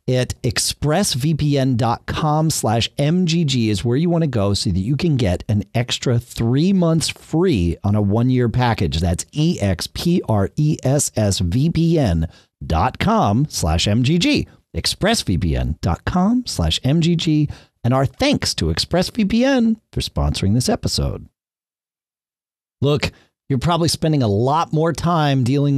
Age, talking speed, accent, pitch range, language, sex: 40-59, 120 wpm, American, 100-155 Hz, English, male